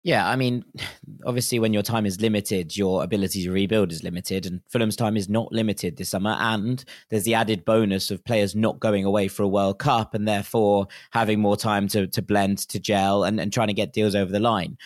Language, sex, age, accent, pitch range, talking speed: English, male, 20-39, British, 100-115 Hz, 225 wpm